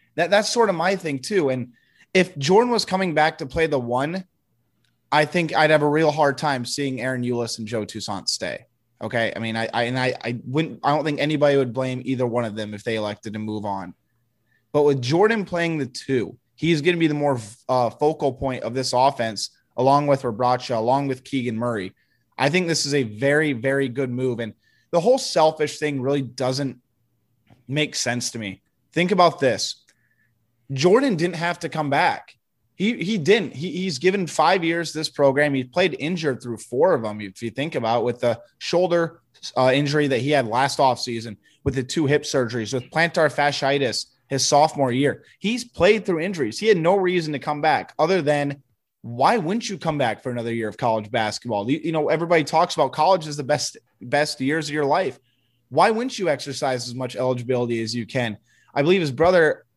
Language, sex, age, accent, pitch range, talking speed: English, male, 20-39, American, 120-160 Hz, 210 wpm